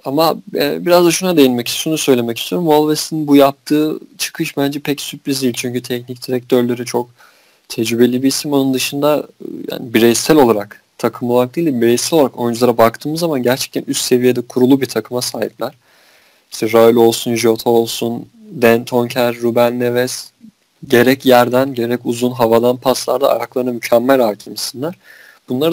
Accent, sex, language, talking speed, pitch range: native, male, Turkish, 145 wpm, 120-150 Hz